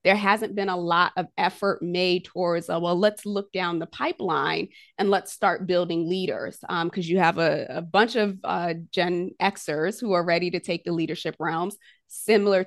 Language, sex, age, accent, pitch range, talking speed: English, female, 20-39, American, 170-200 Hz, 195 wpm